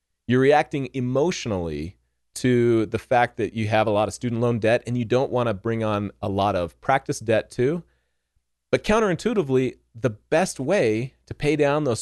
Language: English